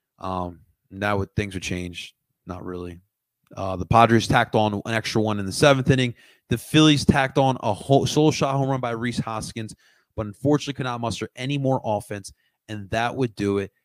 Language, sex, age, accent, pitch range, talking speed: English, male, 30-49, American, 100-140 Hz, 195 wpm